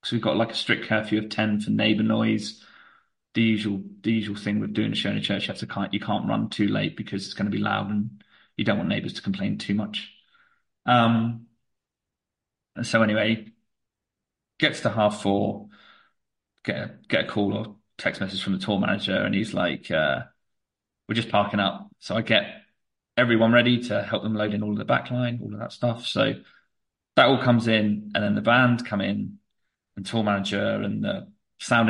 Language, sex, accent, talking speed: English, male, British, 210 wpm